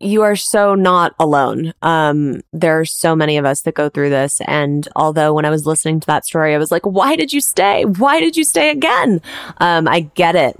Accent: American